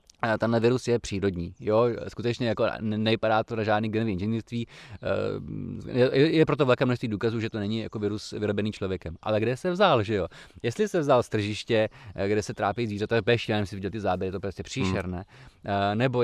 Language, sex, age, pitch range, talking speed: Czech, male, 20-39, 110-135 Hz, 195 wpm